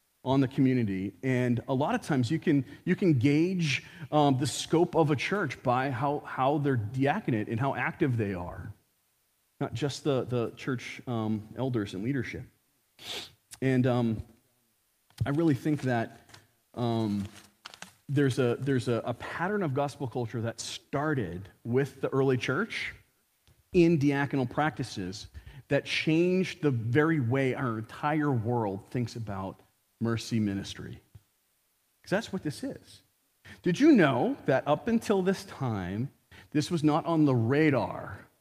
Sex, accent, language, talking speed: male, American, English, 145 wpm